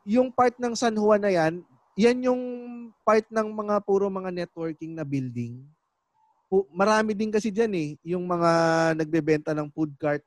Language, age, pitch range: Filipino, 20-39, 145-195 Hz